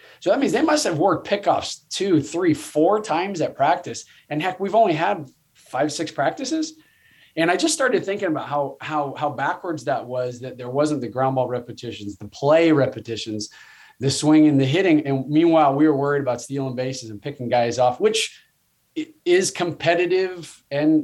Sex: male